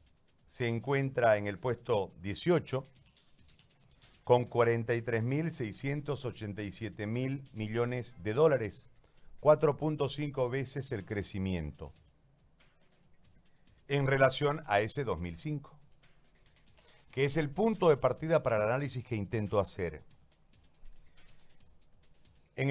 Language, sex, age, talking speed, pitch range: Spanish, male, 50-69, 85 wpm, 110-150 Hz